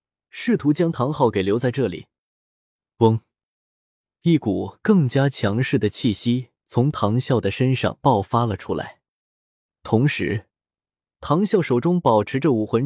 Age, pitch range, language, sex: 20-39, 105-150 Hz, Chinese, male